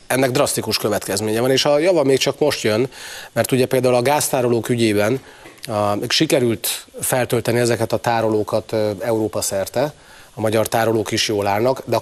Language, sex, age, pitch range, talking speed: Hungarian, male, 30-49, 105-130 Hz, 170 wpm